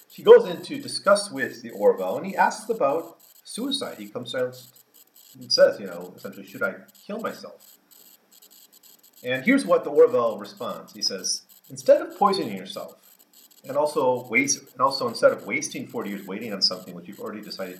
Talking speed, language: 180 wpm, English